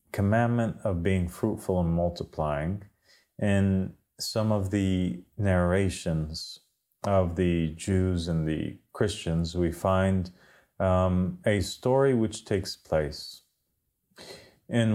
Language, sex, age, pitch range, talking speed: English, male, 30-49, 90-105 Hz, 105 wpm